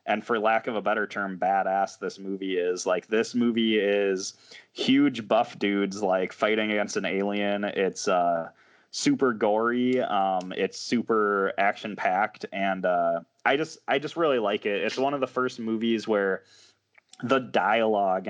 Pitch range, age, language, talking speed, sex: 95-115 Hz, 20-39, English, 165 wpm, male